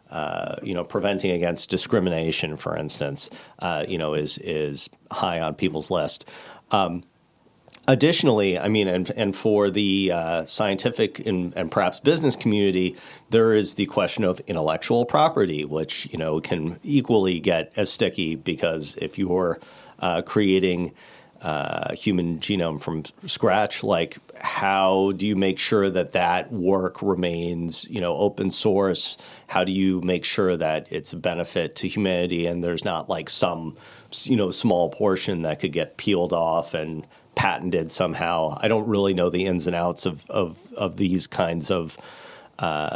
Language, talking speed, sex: English, 160 wpm, male